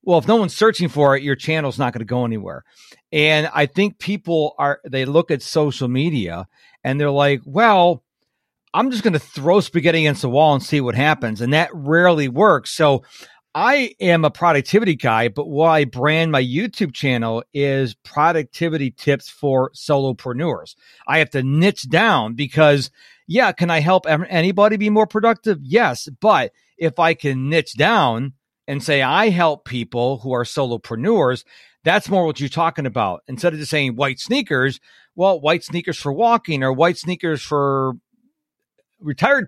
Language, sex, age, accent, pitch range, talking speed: English, male, 50-69, American, 135-175 Hz, 170 wpm